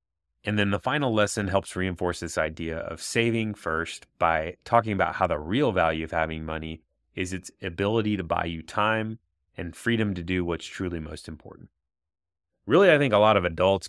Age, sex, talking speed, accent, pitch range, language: 30-49, male, 190 wpm, American, 85-105 Hz, English